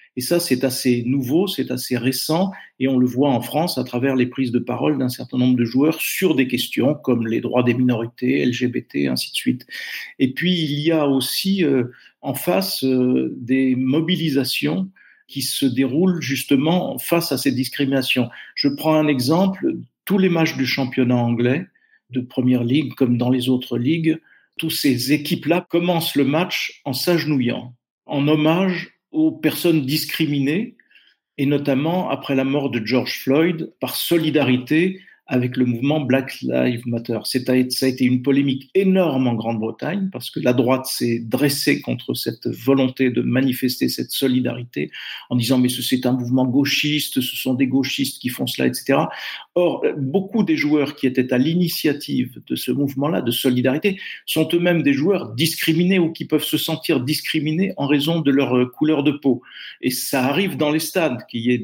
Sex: male